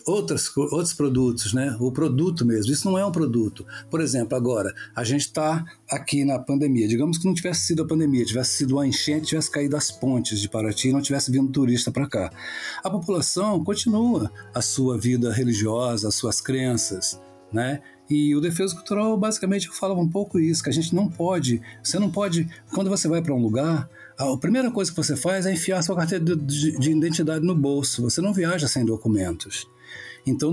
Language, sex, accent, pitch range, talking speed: Portuguese, male, Brazilian, 125-185 Hz, 200 wpm